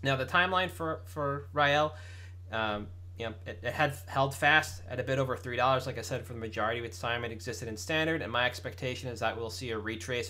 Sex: male